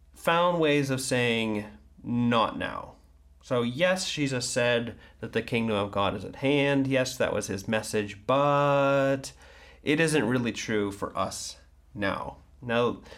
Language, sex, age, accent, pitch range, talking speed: English, male, 30-49, American, 100-130 Hz, 145 wpm